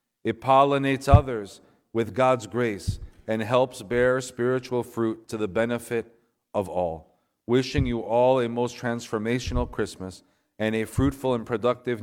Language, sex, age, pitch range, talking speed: English, male, 40-59, 105-125 Hz, 140 wpm